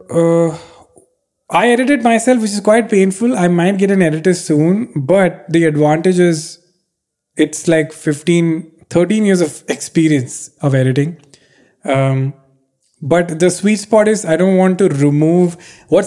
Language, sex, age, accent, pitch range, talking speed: English, male, 20-39, Indian, 145-190 Hz, 145 wpm